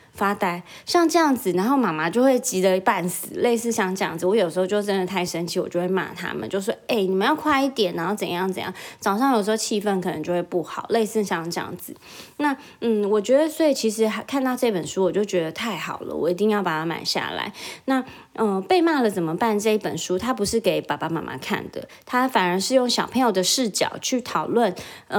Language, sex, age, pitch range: Chinese, female, 20-39, 185-265 Hz